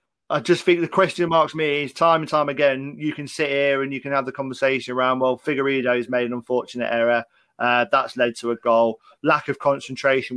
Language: English